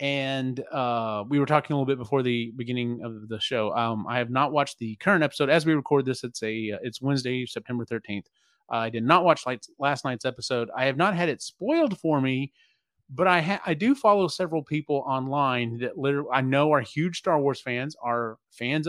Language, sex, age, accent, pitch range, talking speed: English, male, 30-49, American, 120-160 Hz, 220 wpm